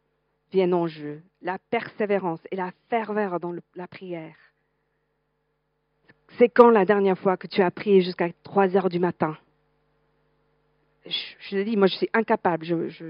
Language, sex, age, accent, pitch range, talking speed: French, female, 50-69, French, 180-245 Hz, 160 wpm